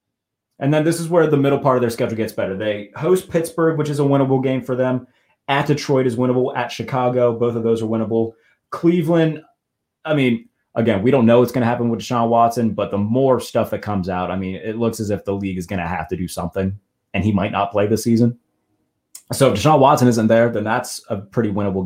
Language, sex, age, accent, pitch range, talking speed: English, male, 30-49, American, 105-135 Hz, 240 wpm